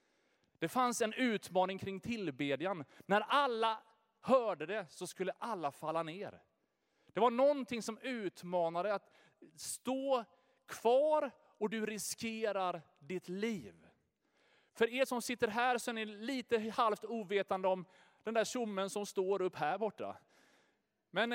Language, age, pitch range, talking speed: Swedish, 30-49, 185-245 Hz, 140 wpm